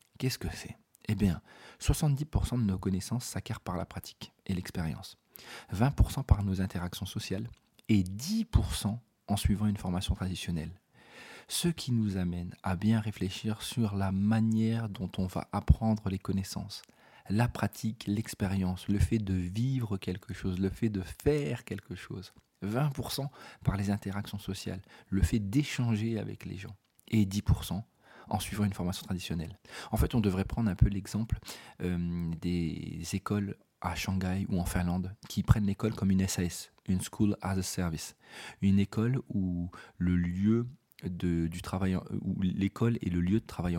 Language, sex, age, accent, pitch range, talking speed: French, male, 40-59, French, 90-110 Hz, 160 wpm